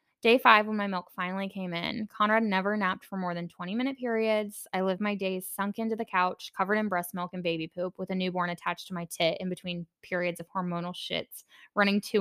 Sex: female